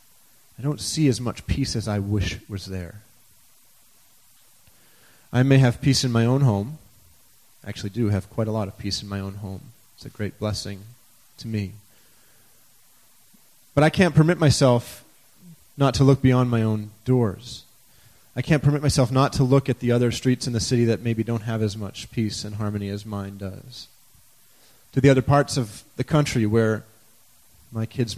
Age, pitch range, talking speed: 30-49, 110-135 Hz, 185 wpm